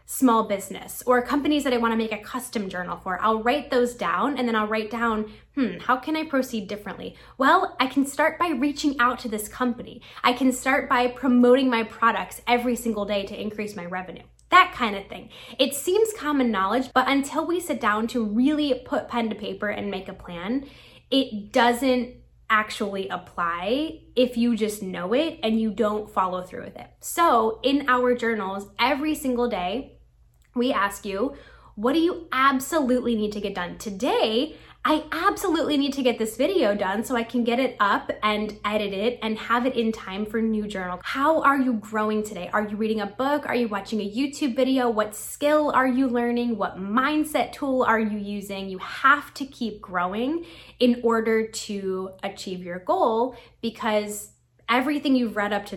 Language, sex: English, female